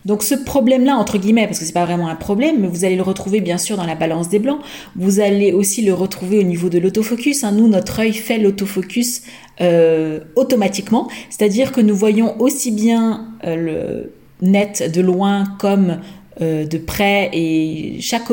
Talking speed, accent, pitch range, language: 190 wpm, French, 180-220 Hz, French